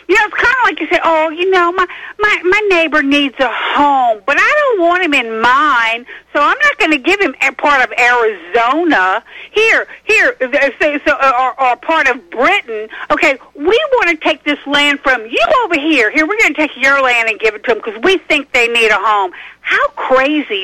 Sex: female